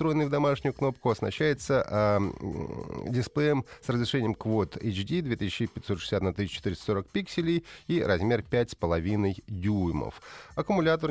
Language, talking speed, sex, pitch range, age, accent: Russian, 105 wpm, male, 95-130 Hz, 30-49, native